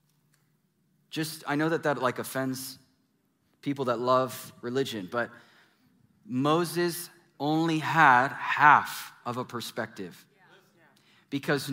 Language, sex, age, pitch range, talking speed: English, male, 30-49, 135-170 Hz, 100 wpm